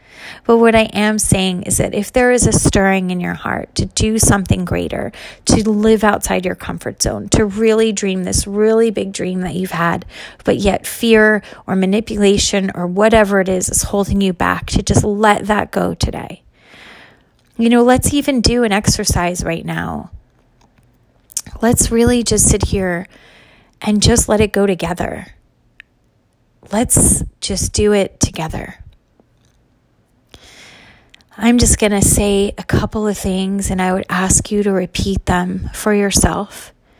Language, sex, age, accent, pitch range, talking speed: English, female, 30-49, American, 180-215 Hz, 155 wpm